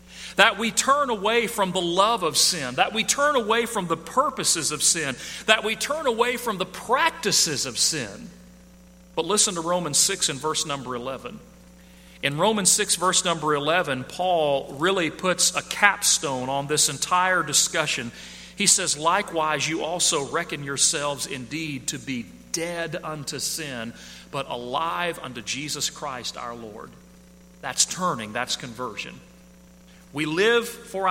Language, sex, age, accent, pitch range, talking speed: English, male, 40-59, American, 140-195 Hz, 150 wpm